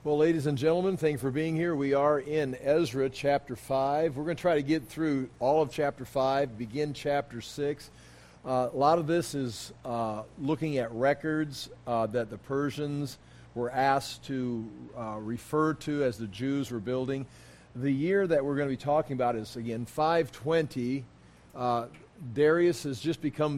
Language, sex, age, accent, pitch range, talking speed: English, male, 50-69, American, 125-150 Hz, 180 wpm